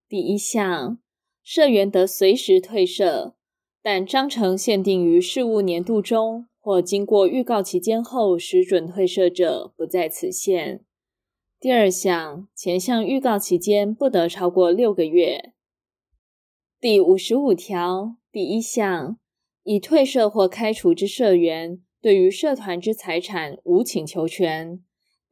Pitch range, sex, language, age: 180-235 Hz, female, Chinese, 20-39